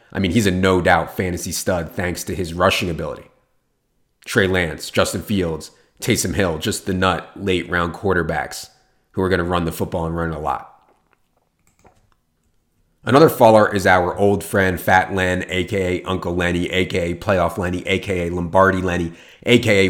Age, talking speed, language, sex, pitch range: 30-49, 160 wpm, English, male, 85-100 Hz